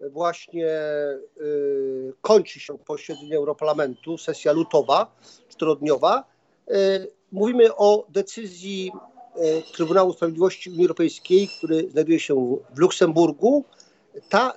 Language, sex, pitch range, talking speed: Polish, male, 170-225 Hz, 105 wpm